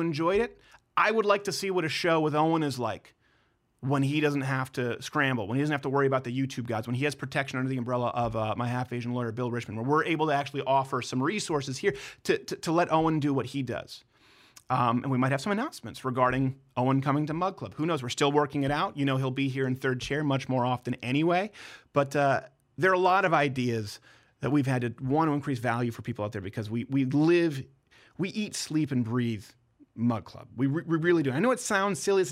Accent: American